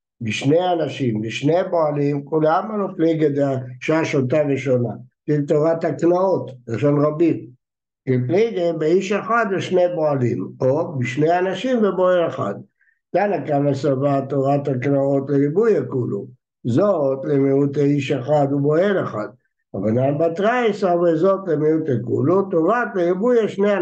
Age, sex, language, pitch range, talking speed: 60-79, male, Hebrew, 135-180 Hz, 70 wpm